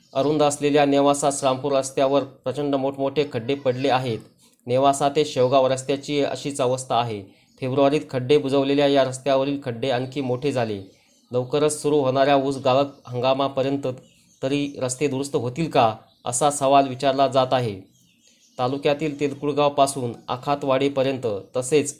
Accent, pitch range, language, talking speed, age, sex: native, 130-145 Hz, Marathi, 125 wpm, 30-49, male